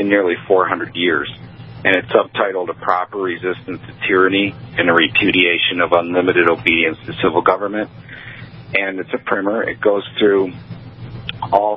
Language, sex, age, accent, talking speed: English, male, 40-59, American, 150 wpm